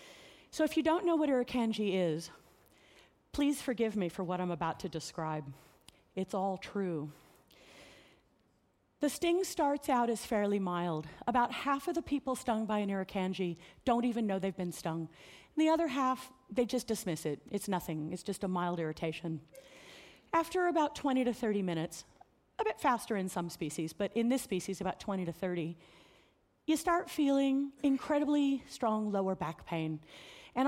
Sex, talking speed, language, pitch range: female, 165 wpm, English, 180-265 Hz